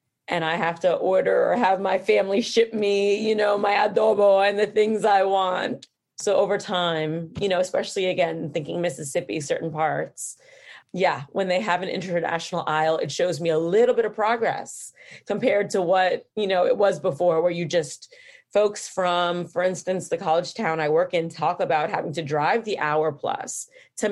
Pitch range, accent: 165-210 Hz, American